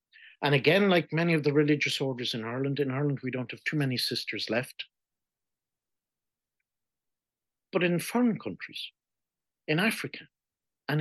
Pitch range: 125-170 Hz